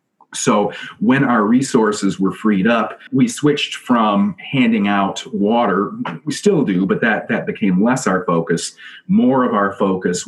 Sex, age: male, 30-49